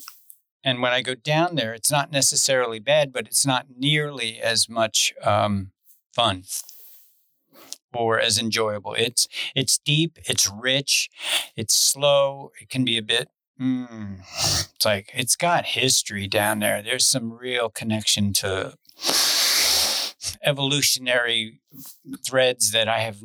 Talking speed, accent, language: 130 wpm, American, English